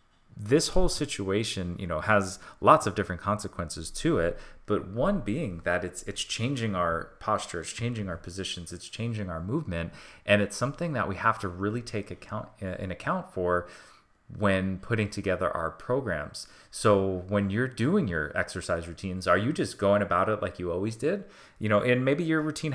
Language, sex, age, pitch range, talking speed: English, male, 30-49, 90-105 Hz, 185 wpm